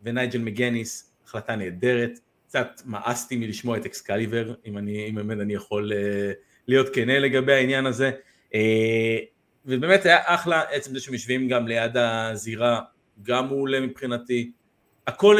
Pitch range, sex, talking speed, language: 115-165 Hz, male, 130 wpm, Hebrew